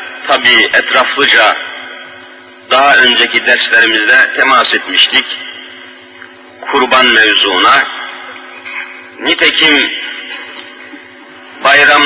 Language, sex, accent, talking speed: Turkish, male, native, 55 wpm